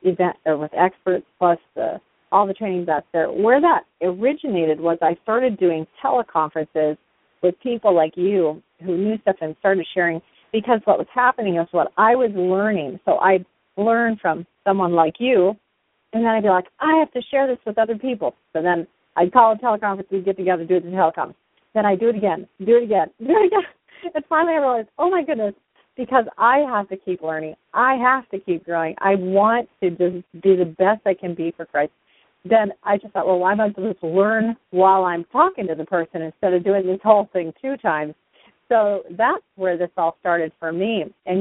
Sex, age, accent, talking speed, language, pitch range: female, 40-59, American, 215 wpm, English, 170-225 Hz